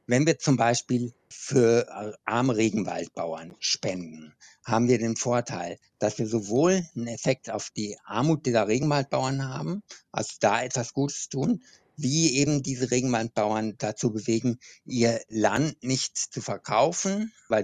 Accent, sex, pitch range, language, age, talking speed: German, male, 110-135 Hz, German, 60-79, 135 wpm